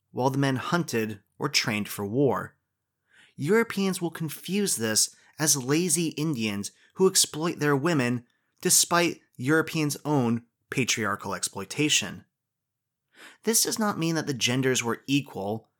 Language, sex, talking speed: English, male, 125 wpm